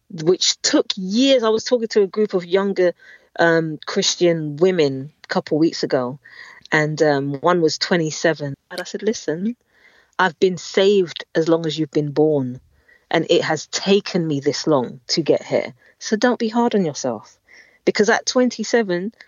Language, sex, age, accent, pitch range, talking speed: English, female, 40-59, British, 155-215 Hz, 175 wpm